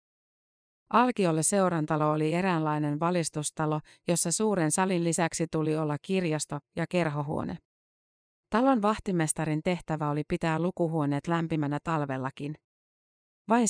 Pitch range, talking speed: 155-185 Hz, 100 wpm